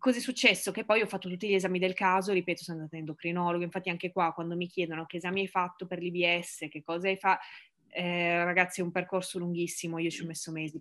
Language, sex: Italian, female